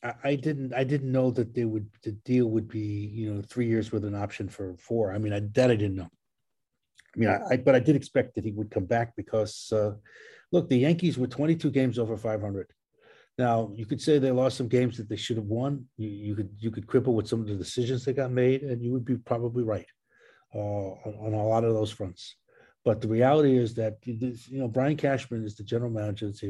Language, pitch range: English, 105-125 Hz